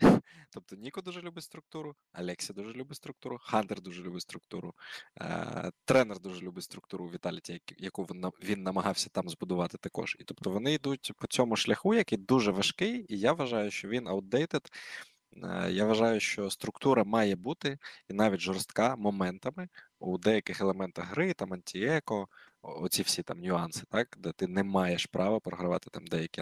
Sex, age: male, 20-39